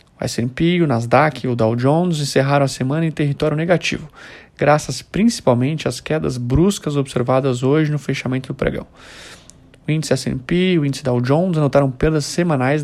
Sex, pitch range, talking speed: male, 130-160 Hz, 165 wpm